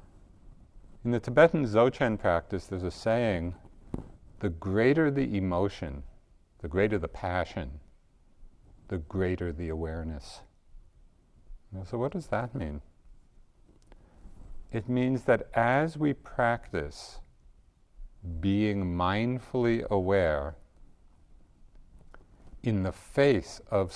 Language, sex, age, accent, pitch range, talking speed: English, male, 50-69, American, 85-110 Hz, 95 wpm